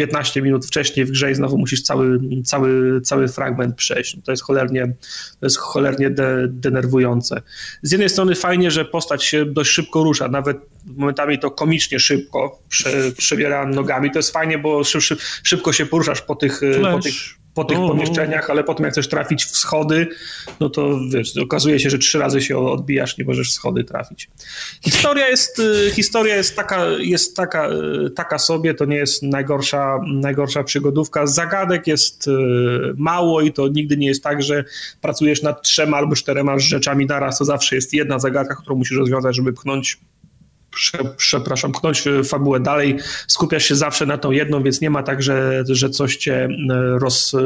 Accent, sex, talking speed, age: native, male, 175 wpm, 30-49